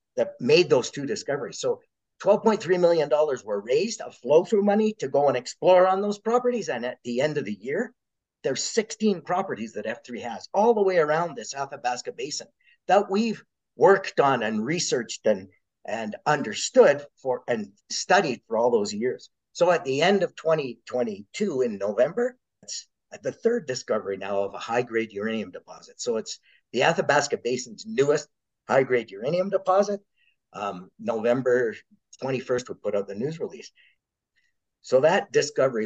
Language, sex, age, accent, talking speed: English, male, 50-69, American, 160 wpm